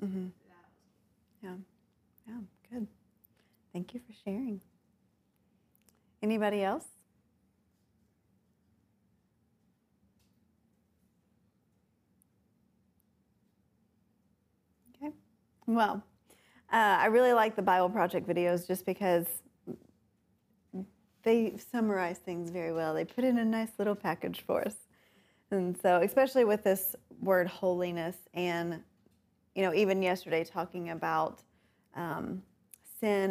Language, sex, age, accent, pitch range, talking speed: English, female, 30-49, American, 175-210 Hz, 95 wpm